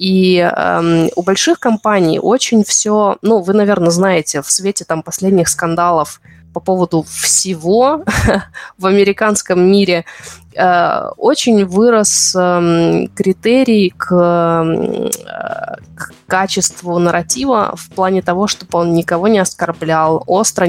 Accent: native